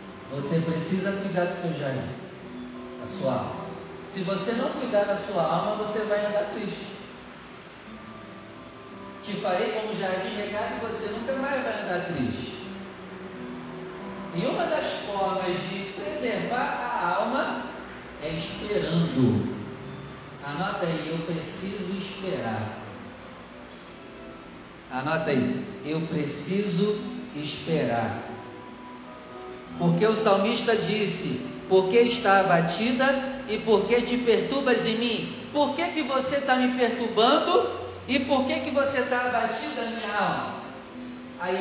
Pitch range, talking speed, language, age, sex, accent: 165-230 Hz, 125 wpm, Portuguese, 40-59, male, Brazilian